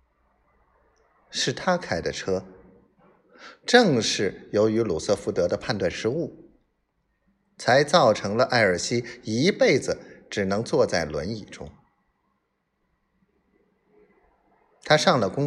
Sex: male